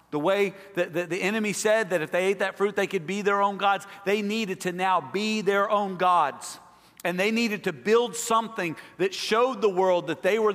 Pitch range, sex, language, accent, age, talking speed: 170-210 Hz, male, English, American, 50-69, 220 wpm